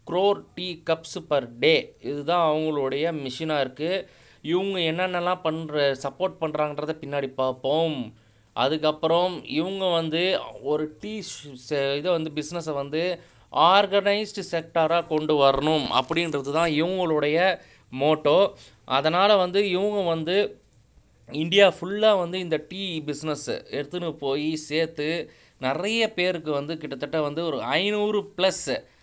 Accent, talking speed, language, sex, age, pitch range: native, 110 wpm, Tamil, male, 20-39, 140-175 Hz